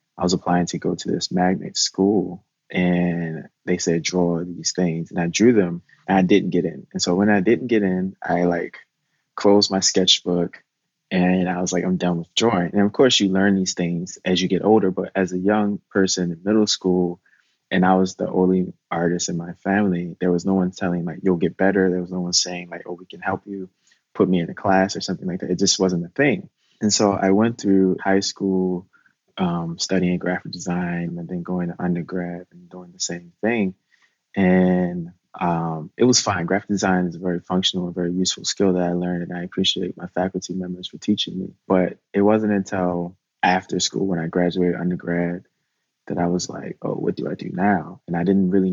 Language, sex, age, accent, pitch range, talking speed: English, male, 20-39, American, 90-95 Hz, 220 wpm